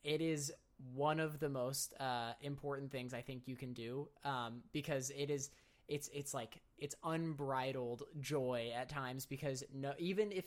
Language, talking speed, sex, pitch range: English, 170 wpm, male, 125-145 Hz